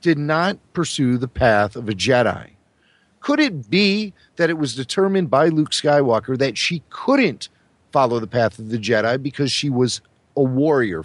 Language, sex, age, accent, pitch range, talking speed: English, male, 40-59, American, 115-165 Hz, 175 wpm